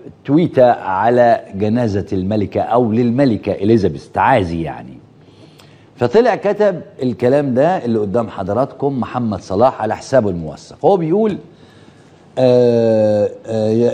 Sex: male